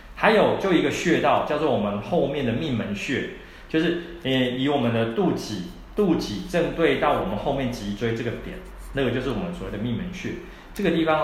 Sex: male